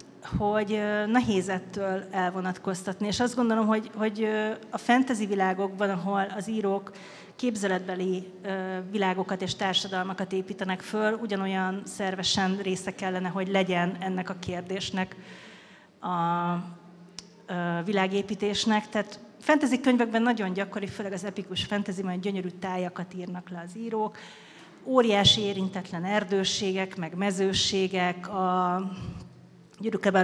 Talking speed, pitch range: 105 wpm, 185-220 Hz